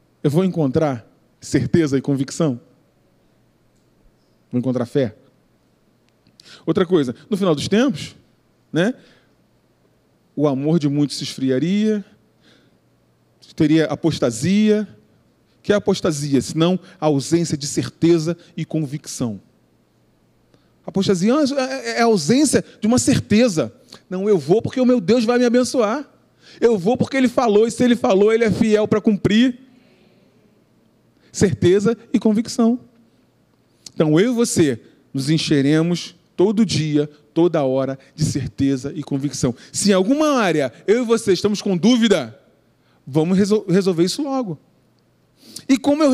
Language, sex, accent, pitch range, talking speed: Portuguese, male, Brazilian, 150-230 Hz, 130 wpm